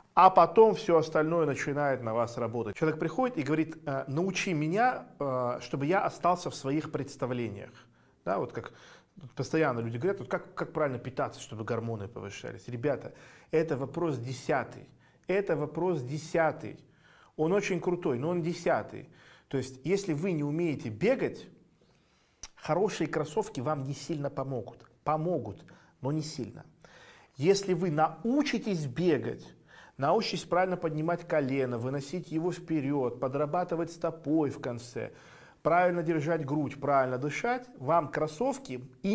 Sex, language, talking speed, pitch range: male, Russian, 135 wpm, 135-175 Hz